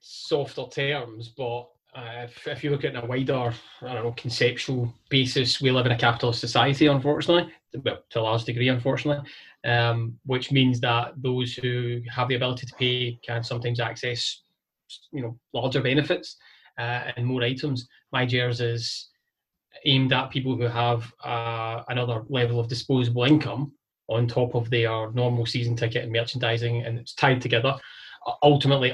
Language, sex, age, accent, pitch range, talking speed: English, male, 20-39, British, 120-135 Hz, 160 wpm